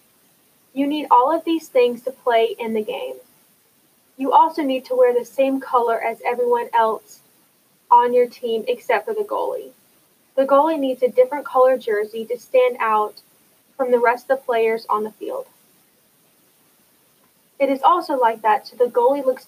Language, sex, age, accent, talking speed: English, female, 10-29, American, 175 wpm